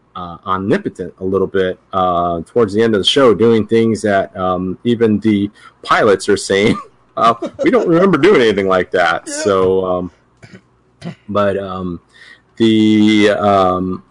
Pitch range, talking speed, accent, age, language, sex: 90-110 Hz, 150 wpm, American, 30-49, English, male